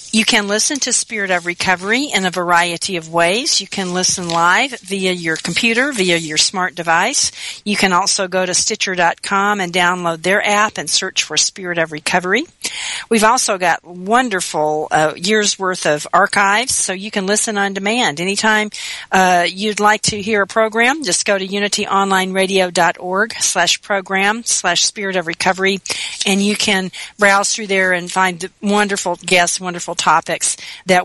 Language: English